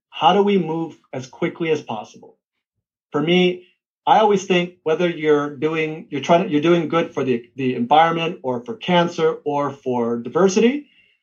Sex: male